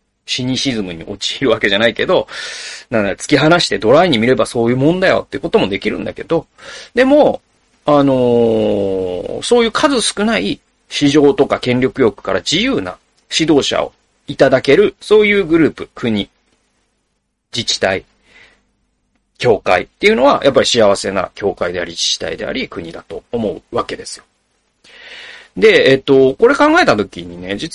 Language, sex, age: Japanese, male, 40-59